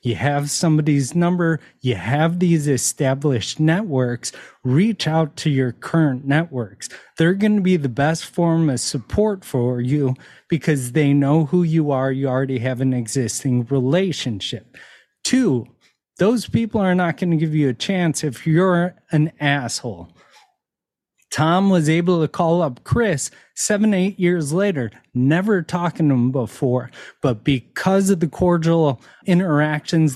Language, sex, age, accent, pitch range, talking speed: English, male, 30-49, American, 140-175 Hz, 150 wpm